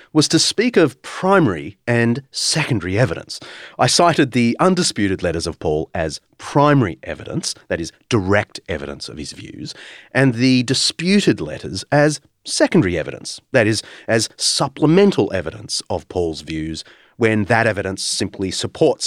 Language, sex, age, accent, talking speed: English, male, 30-49, Australian, 140 wpm